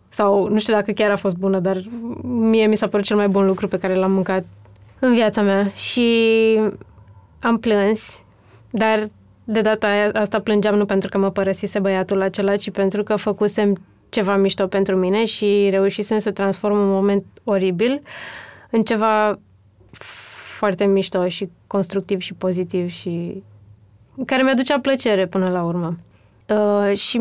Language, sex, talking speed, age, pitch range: Romanian, female, 155 wpm, 20-39, 190-215 Hz